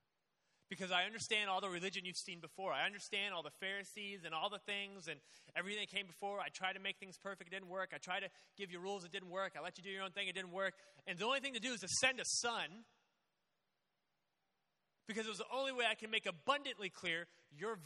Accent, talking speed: American, 250 wpm